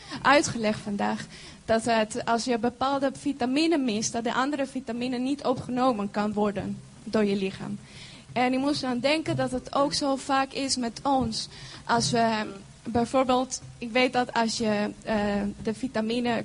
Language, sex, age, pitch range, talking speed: Dutch, female, 20-39, 220-280 Hz, 160 wpm